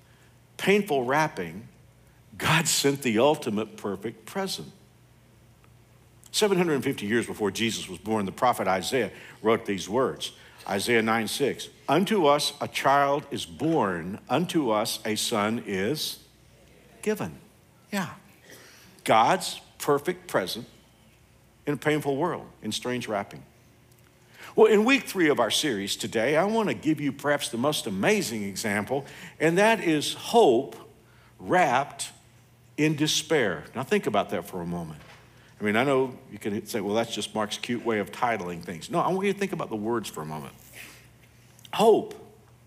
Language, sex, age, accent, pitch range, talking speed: English, male, 60-79, American, 110-155 Hz, 150 wpm